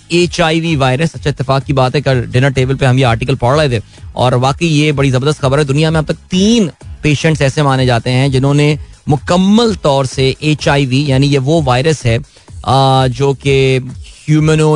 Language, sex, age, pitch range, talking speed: Hindi, male, 30-49, 130-160 Hz, 190 wpm